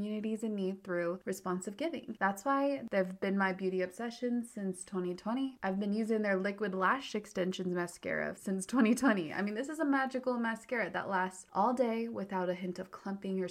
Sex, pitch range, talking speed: female, 195-245 Hz, 190 wpm